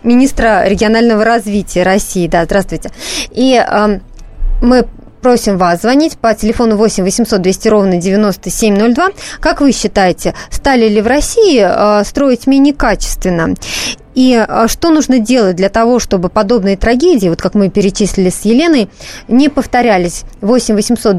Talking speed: 140 wpm